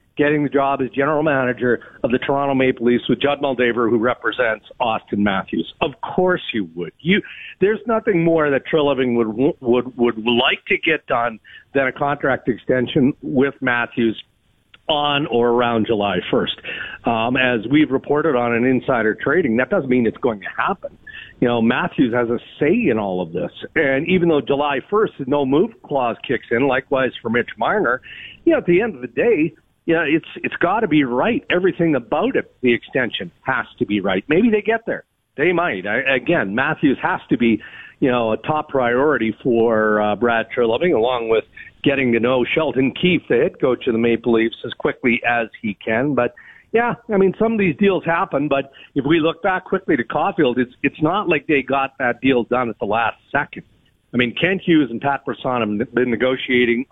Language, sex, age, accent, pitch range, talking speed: English, male, 50-69, American, 120-155 Hz, 200 wpm